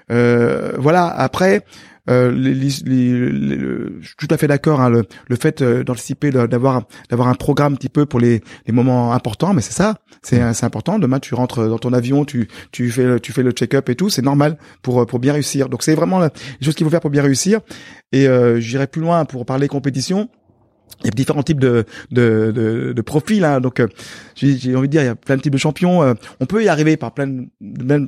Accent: French